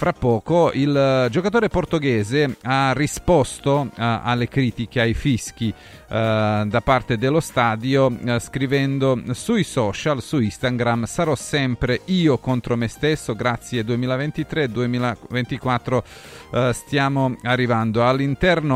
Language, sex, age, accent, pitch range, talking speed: Italian, male, 40-59, native, 115-140 Hz, 115 wpm